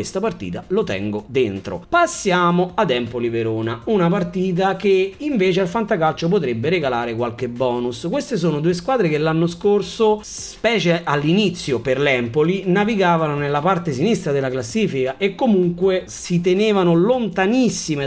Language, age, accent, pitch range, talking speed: Italian, 30-49, native, 125-190 Hz, 135 wpm